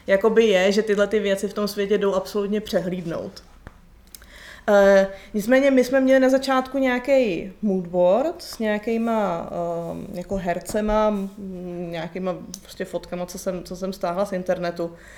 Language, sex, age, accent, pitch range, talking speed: Czech, female, 20-39, native, 190-210 Hz, 125 wpm